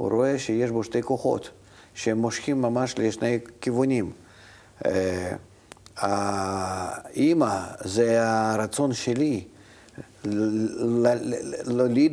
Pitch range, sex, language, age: 100-120 Hz, male, Hebrew, 50-69